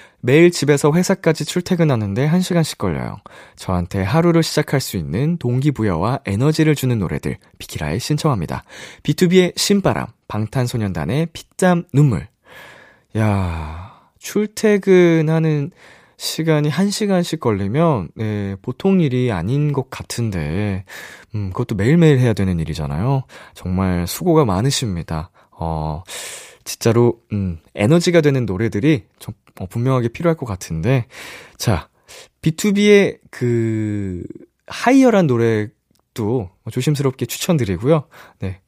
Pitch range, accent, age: 105-165 Hz, native, 20-39